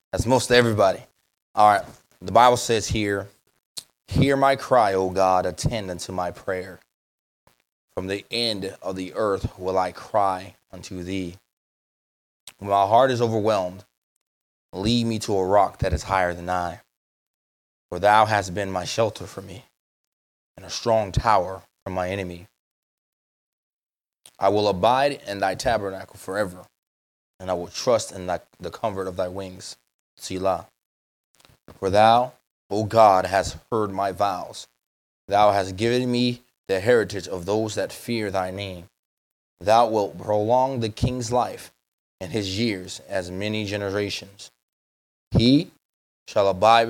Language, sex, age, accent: English, male, 20-39, American